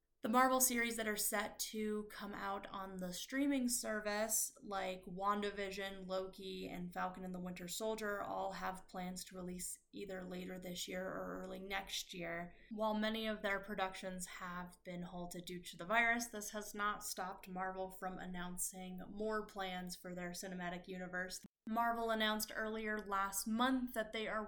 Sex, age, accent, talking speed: female, 20-39, American, 165 wpm